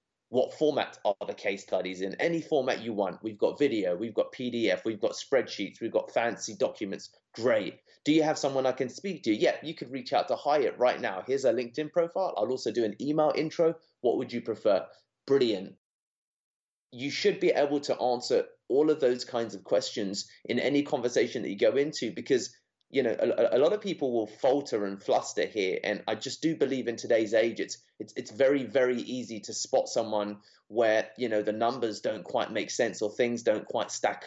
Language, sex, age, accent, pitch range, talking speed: English, male, 30-49, British, 110-150 Hz, 210 wpm